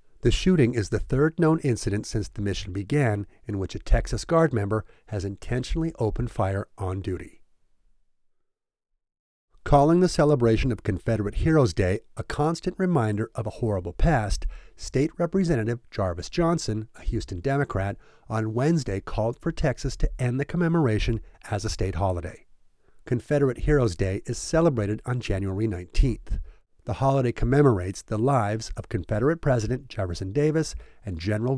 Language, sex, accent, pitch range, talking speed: English, male, American, 100-140 Hz, 145 wpm